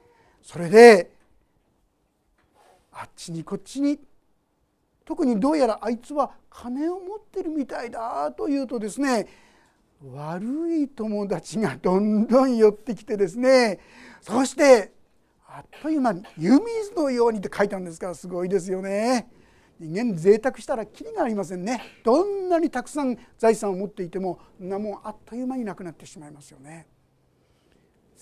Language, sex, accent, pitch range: Japanese, male, native, 190-280 Hz